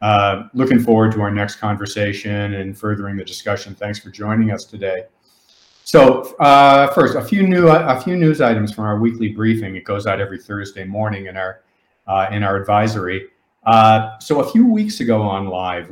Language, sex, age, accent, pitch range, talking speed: English, male, 50-69, American, 95-115 Hz, 190 wpm